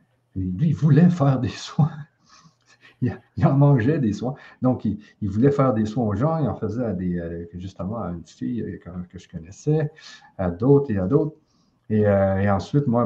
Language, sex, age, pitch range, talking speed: French, male, 60-79, 105-150 Hz, 185 wpm